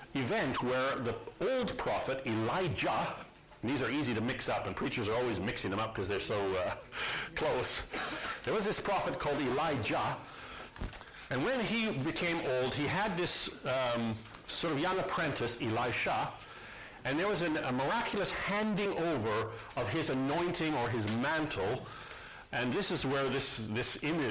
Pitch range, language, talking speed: 110-155 Hz, English, 165 wpm